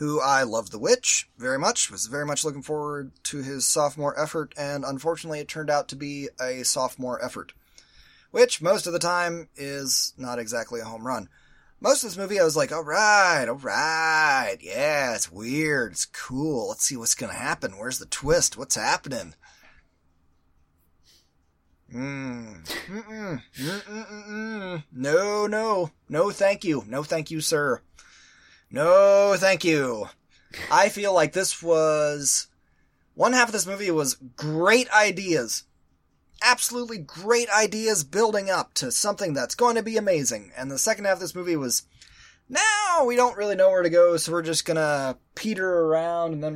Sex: male